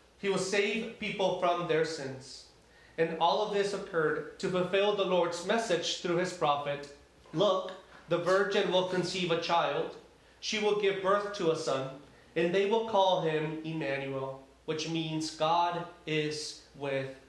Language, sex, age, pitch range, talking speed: English, male, 30-49, 155-190 Hz, 155 wpm